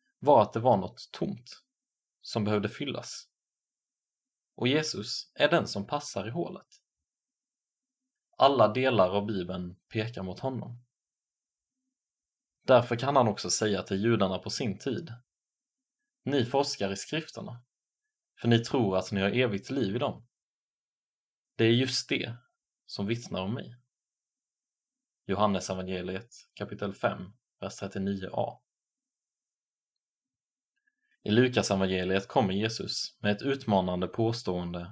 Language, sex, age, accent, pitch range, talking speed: Swedish, male, 20-39, Norwegian, 100-130 Hz, 120 wpm